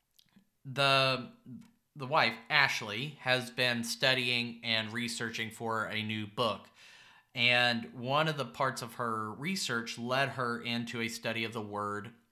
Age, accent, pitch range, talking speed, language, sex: 30-49, American, 105-125 Hz, 140 wpm, English, male